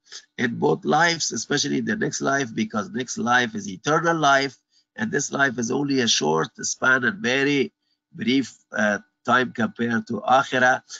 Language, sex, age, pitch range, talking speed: English, male, 50-69, 110-170 Hz, 165 wpm